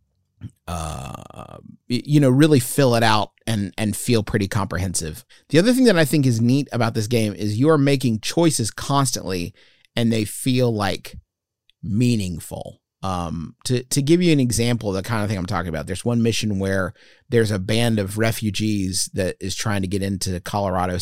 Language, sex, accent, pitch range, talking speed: English, male, American, 100-125 Hz, 185 wpm